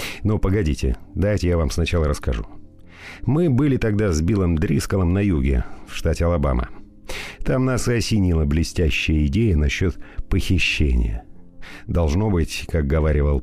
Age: 50-69